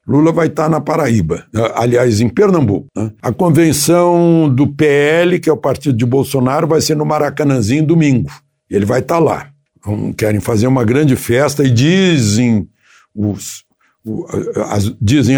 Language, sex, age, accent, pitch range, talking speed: Portuguese, male, 60-79, Brazilian, 125-155 Hz, 135 wpm